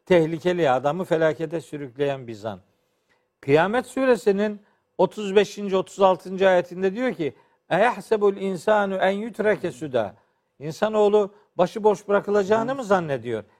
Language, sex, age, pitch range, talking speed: Turkish, male, 50-69, 165-210 Hz, 105 wpm